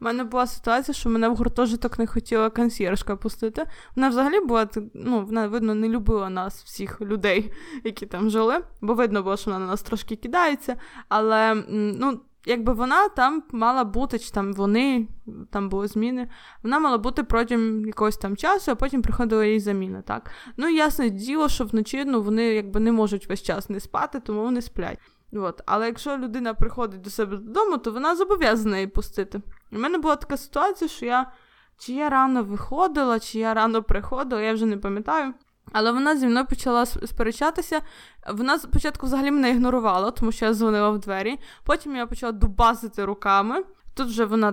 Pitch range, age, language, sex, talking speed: 215-265 Hz, 20-39, Ukrainian, female, 180 wpm